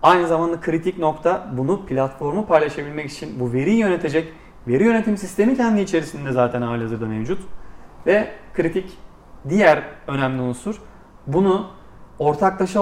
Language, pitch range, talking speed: Turkish, 145-190 Hz, 120 wpm